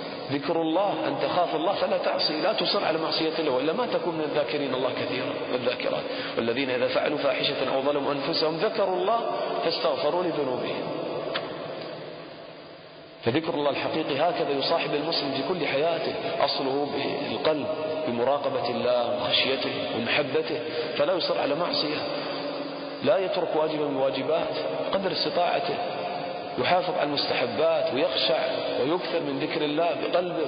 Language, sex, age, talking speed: English, male, 40-59, 125 wpm